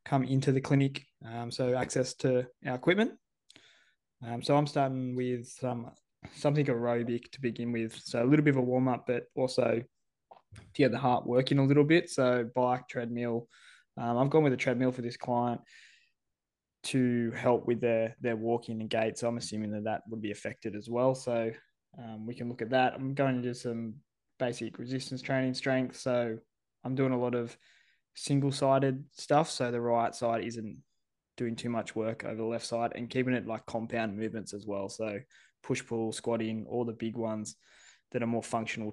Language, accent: English, Australian